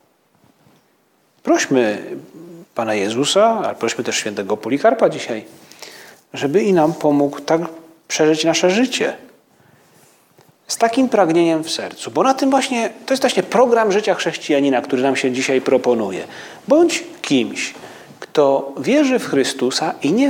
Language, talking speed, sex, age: Polish, 135 wpm, male, 40-59